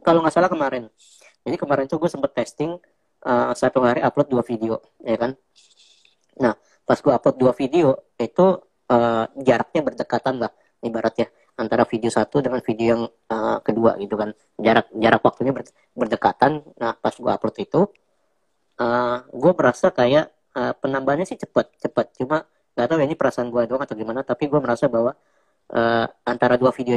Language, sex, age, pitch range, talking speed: Indonesian, female, 20-39, 115-135 Hz, 165 wpm